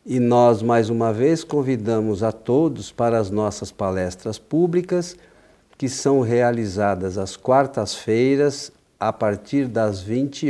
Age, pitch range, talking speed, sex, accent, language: 50-69, 105-155 Hz, 125 wpm, male, Brazilian, Portuguese